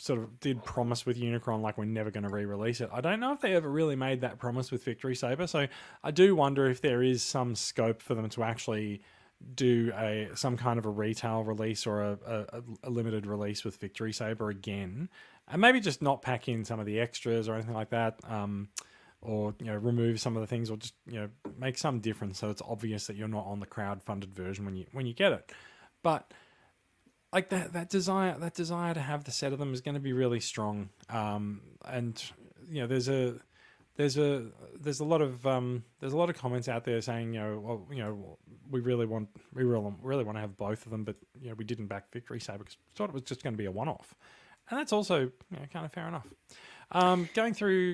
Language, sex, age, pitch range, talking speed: English, male, 20-39, 110-135 Hz, 240 wpm